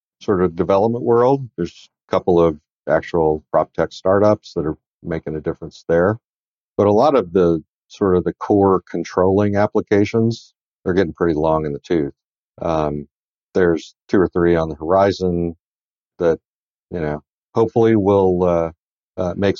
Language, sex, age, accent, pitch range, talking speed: English, male, 50-69, American, 85-105 Hz, 160 wpm